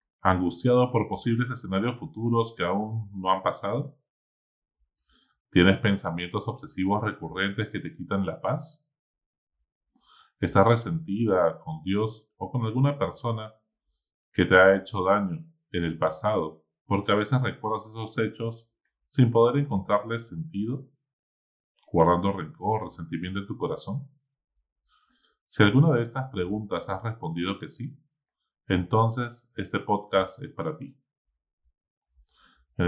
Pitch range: 90-120 Hz